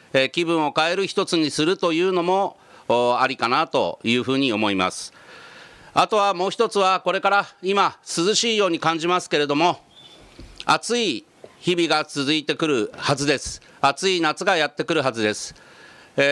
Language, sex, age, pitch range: Japanese, male, 40-59, 140-180 Hz